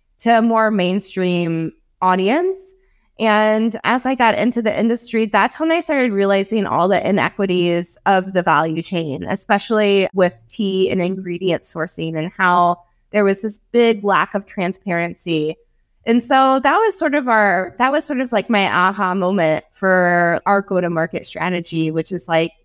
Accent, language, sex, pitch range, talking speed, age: American, English, female, 180-220 Hz, 165 wpm, 20-39